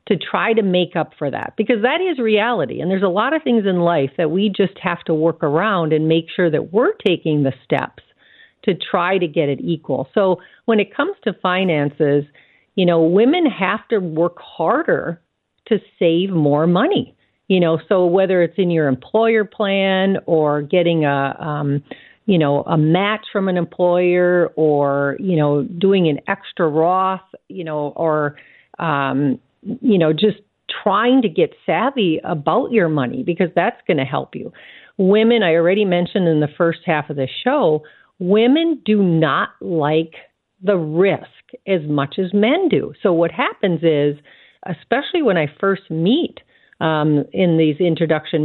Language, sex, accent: English, female, American